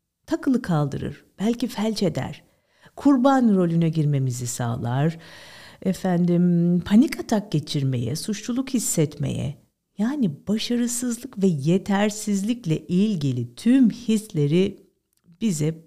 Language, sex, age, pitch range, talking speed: Turkish, female, 50-69, 155-230 Hz, 85 wpm